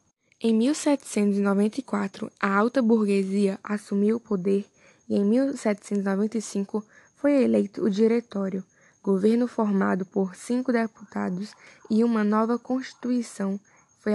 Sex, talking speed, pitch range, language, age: female, 105 wpm, 200-225 Hz, Portuguese, 10-29